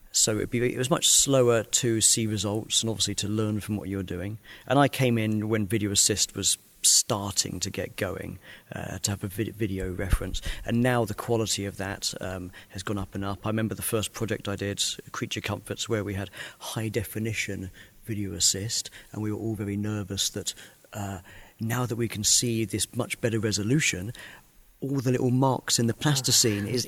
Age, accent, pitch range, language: 40-59, British, 100-115 Hz, Polish